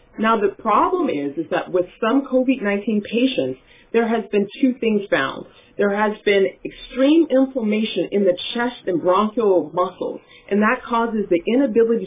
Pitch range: 185-255 Hz